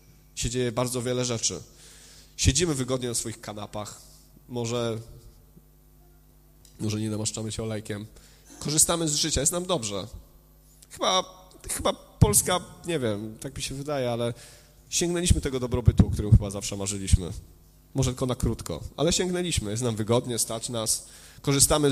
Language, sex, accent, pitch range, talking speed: Polish, male, native, 115-165 Hz, 135 wpm